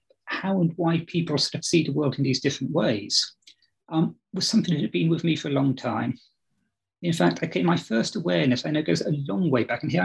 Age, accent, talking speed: 30-49, British, 245 wpm